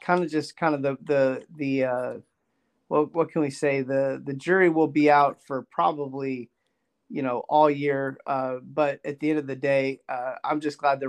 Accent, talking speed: American, 210 wpm